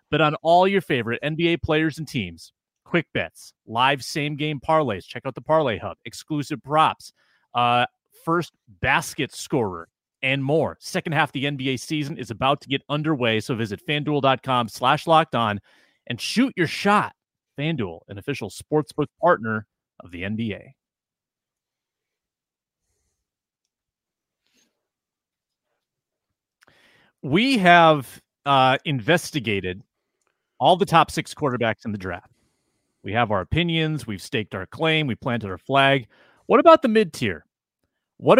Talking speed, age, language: 135 wpm, 30-49, English